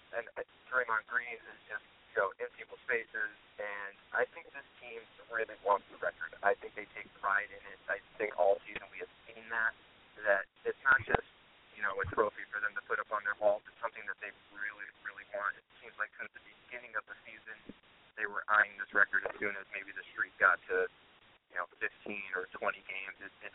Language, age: English, 30-49